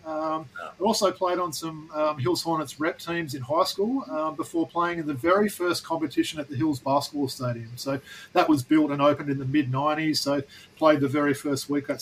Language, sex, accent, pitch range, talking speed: English, male, Australian, 140-170 Hz, 215 wpm